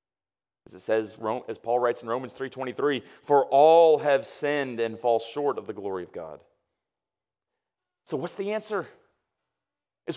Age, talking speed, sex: 40-59, 155 wpm, male